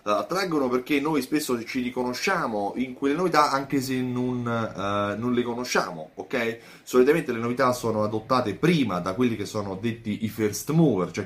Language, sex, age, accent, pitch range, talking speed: Italian, male, 30-49, native, 100-125 Hz, 170 wpm